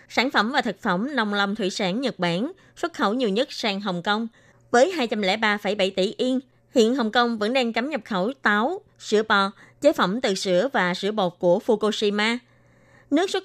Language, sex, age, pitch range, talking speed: Vietnamese, female, 20-39, 200-250 Hz, 195 wpm